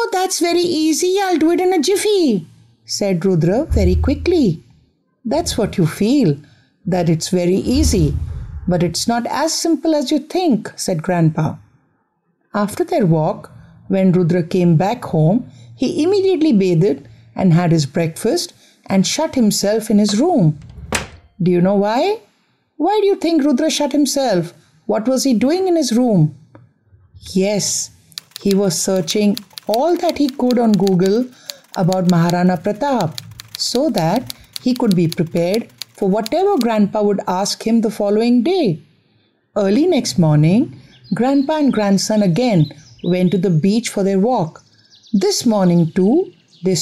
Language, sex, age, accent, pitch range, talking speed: English, female, 50-69, Indian, 170-250 Hz, 150 wpm